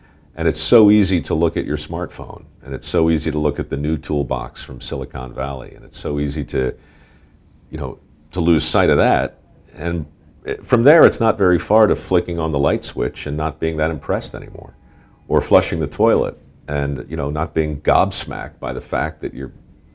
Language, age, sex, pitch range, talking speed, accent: English, 50-69, male, 70-85 Hz, 205 wpm, American